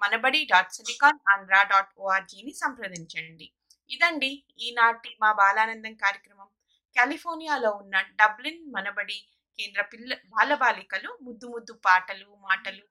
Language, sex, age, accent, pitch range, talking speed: Telugu, female, 20-39, native, 195-250 Hz, 95 wpm